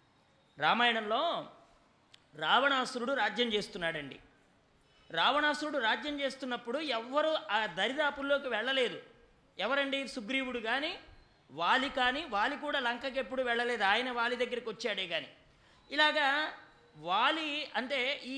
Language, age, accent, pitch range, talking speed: English, 30-49, Indian, 240-290 Hz, 75 wpm